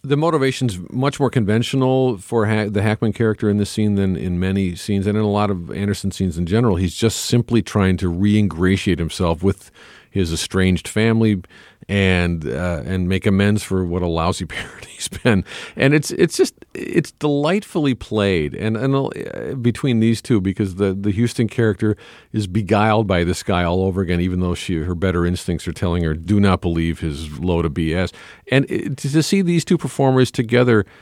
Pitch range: 95-125 Hz